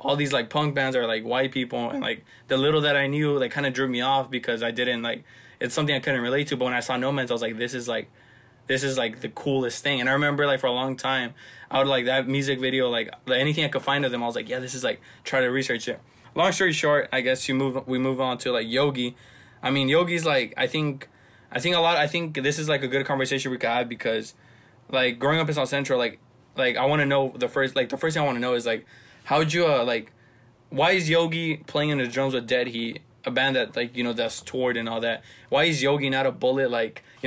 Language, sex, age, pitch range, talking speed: English, male, 20-39, 125-145 Hz, 280 wpm